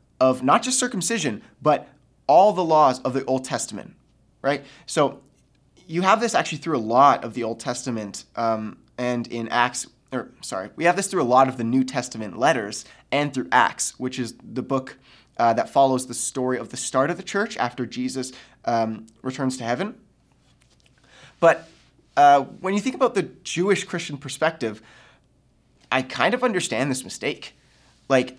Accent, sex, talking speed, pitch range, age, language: American, male, 175 wpm, 125-165 Hz, 20-39, English